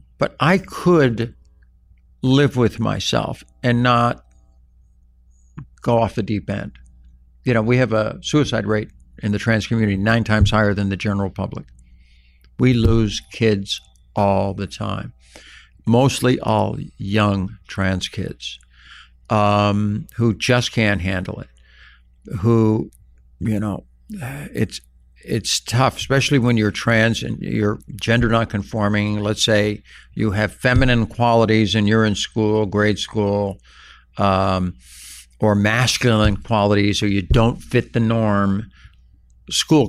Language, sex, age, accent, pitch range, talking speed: English, male, 60-79, American, 95-115 Hz, 130 wpm